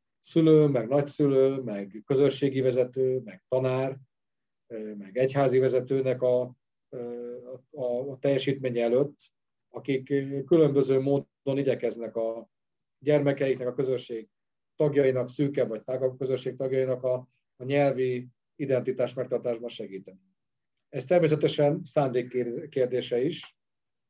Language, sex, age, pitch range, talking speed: Hungarian, male, 40-59, 120-140 Hz, 100 wpm